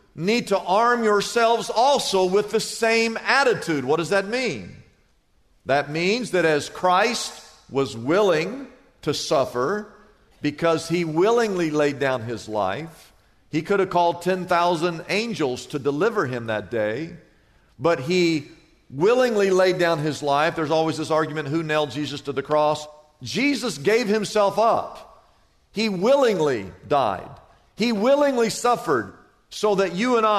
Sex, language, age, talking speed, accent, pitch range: male, English, 50-69, 140 wpm, American, 155-215 Hz